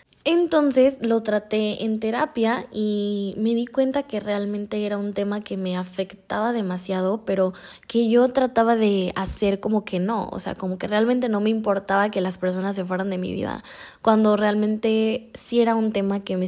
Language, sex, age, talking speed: Spanish, female, 10-29, 185 wpm